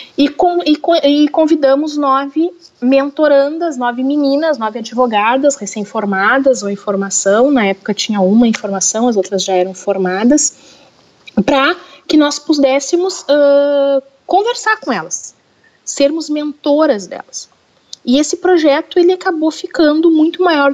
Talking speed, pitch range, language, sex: 115 wpm, 195-275 Hz, Portuguese, female